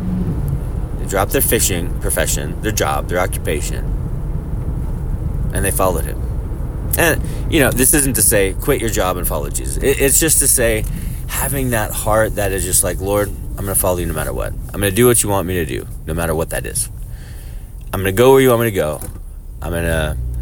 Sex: male